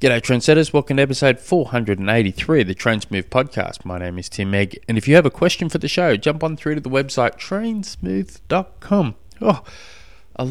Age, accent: 20-39, Australian